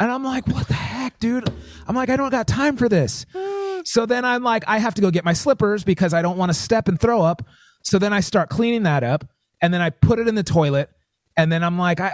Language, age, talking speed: English, 30-49, 265 wpm